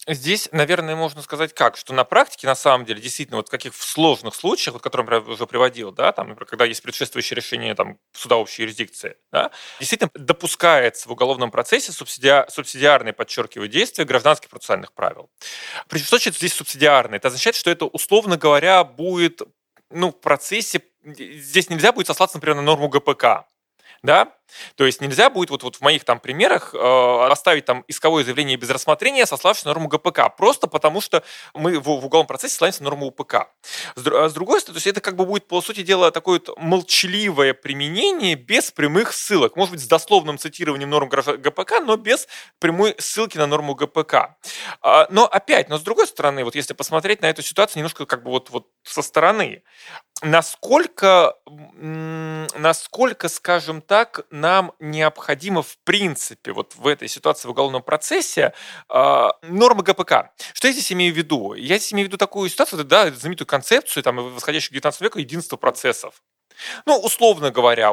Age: 20-39